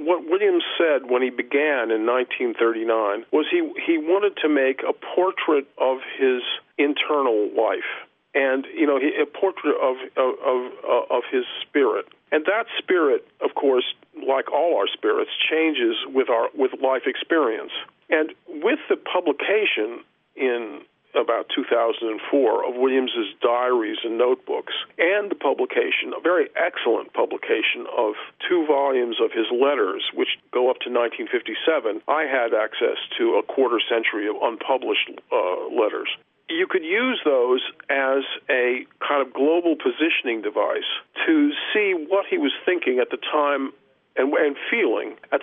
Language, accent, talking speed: English, American, 145 wpm